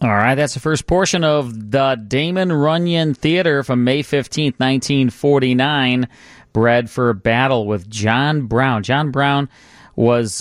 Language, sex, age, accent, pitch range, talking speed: English, male, 40-59, American, 120-150 Hz, 150 wpm